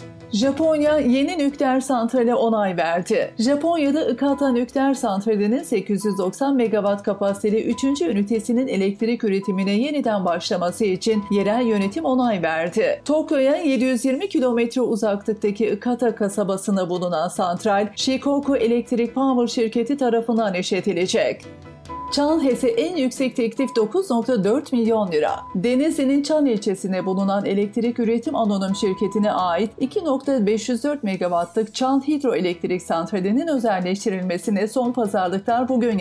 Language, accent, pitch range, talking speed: Turkish, native, 200-260 Hz, 105 wpm